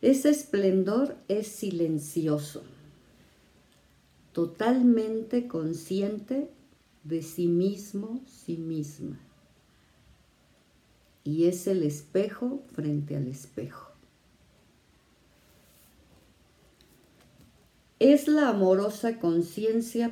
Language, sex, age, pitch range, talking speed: Spanish, female, 50-69, 155-200 Hz, 65 wpm